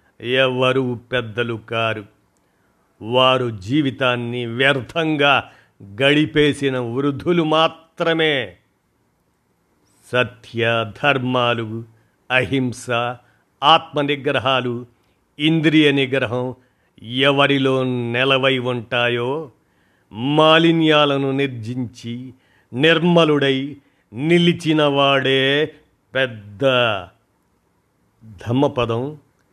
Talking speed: 55 wpm